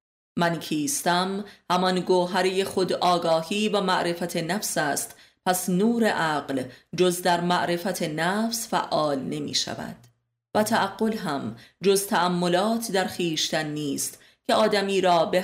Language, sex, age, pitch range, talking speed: Persian, female, 30-49, 160-195 Hz, 125 wpm